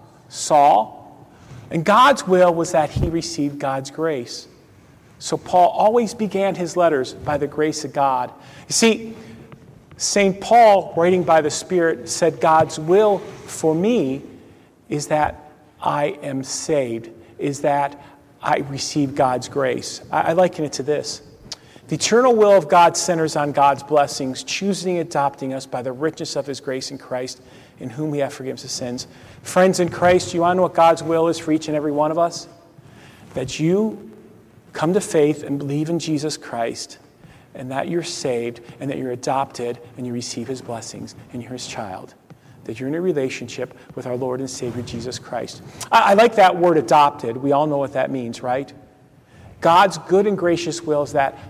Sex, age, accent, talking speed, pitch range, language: male, 40-59, American, 180 wpm, 130-170 Hz, English